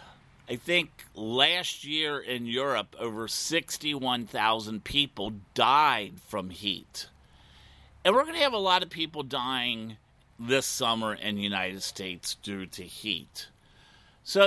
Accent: American